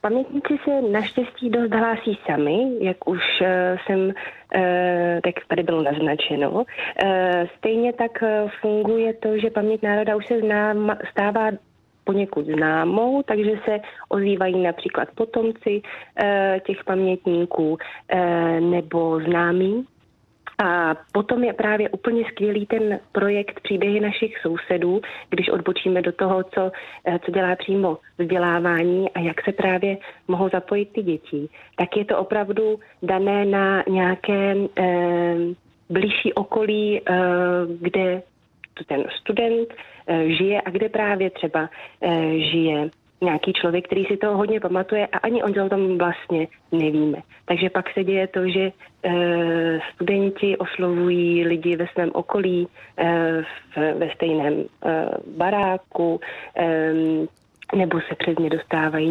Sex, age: female, 30-49